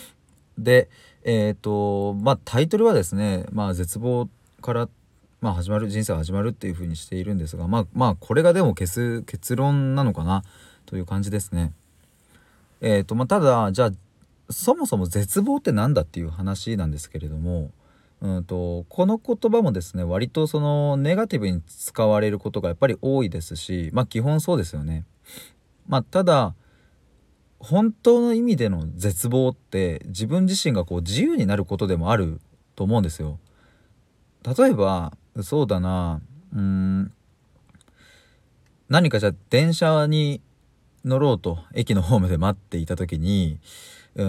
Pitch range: 90-130 Hz